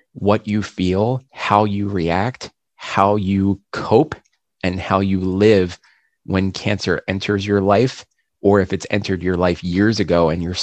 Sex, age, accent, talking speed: male, 30-49, American, 160 wpm